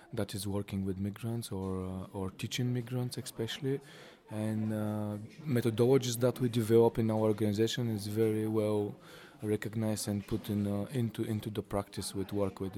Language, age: Italian, 20-39